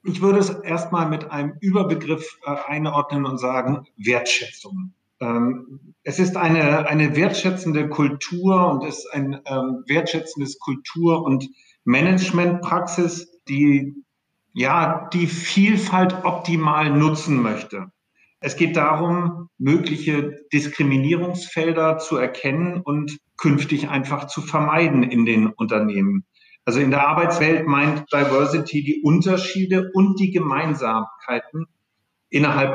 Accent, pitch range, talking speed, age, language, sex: German, 135-170 Hz, 110 wpm, 50-69, German, male